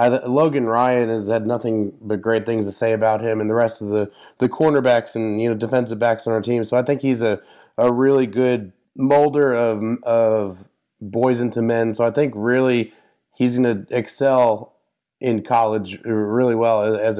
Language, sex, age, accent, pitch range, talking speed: English, male, 20-39, American, 110-130 Hz, 190 wpm